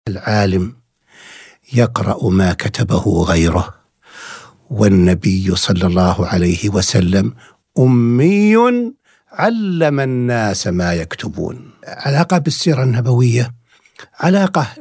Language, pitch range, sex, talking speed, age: Arabic, 115-165 Hz, male, 75 wpm, 60-79